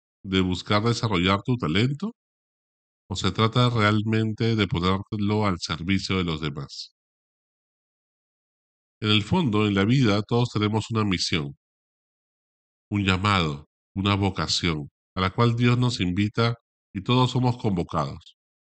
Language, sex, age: Spanish, male, 40-59